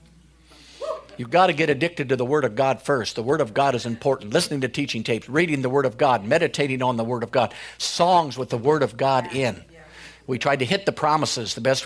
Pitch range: 120-155 Hz